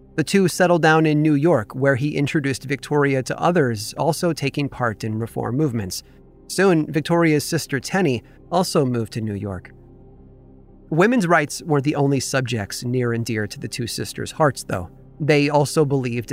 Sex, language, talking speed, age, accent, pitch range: male, English, 170 wpm, 30-49, American, 115-160 Hz